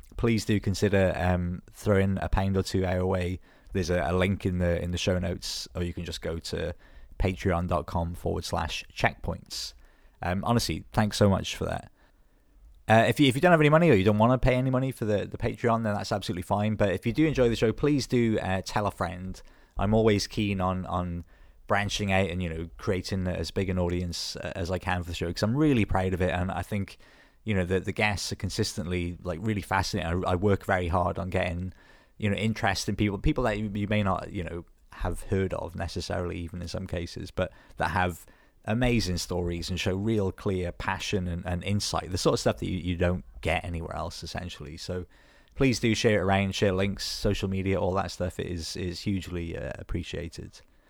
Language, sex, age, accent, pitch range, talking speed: English, male, 20-39, British, 90-105 Hz, 220 wpm